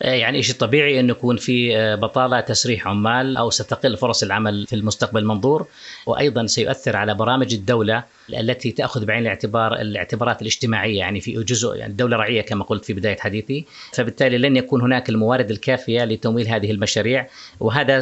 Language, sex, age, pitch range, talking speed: Arabic, female, 30-49, 110-130 Hz, 160 wpm